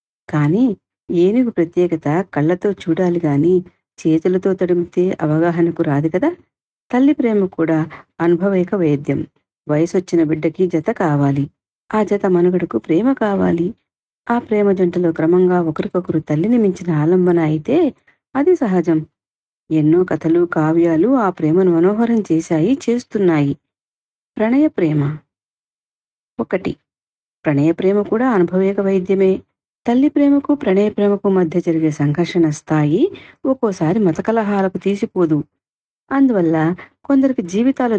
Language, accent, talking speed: Telugu, native, 100 wpm